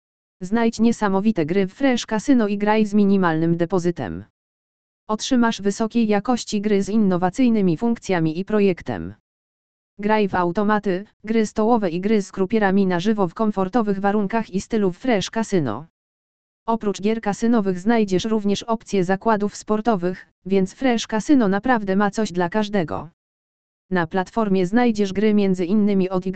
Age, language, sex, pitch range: 20-39, Polish, female, 185-220 Hz